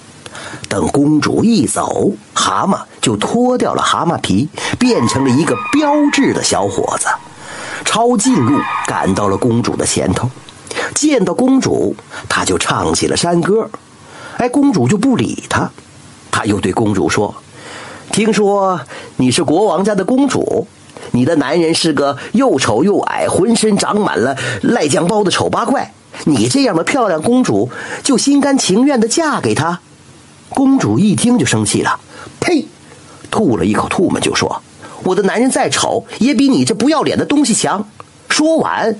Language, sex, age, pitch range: Chinese, male, 50-69, 185-270 Hz